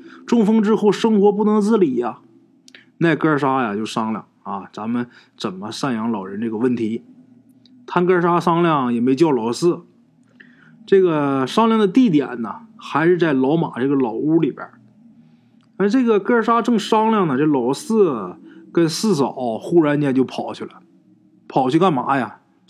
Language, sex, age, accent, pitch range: Chinese, male, 20-39, native, 130-210 Hz